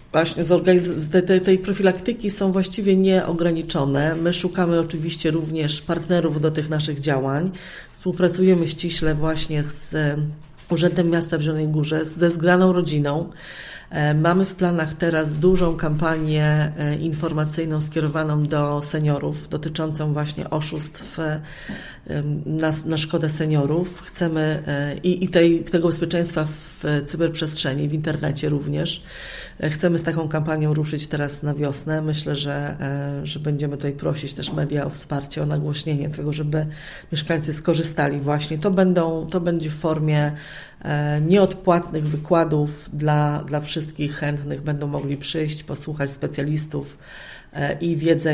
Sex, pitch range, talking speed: female, 150-170 Hz, 120 wpm